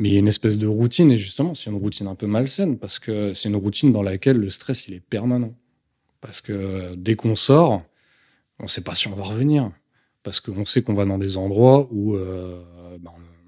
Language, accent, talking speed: French, French, 230 wpm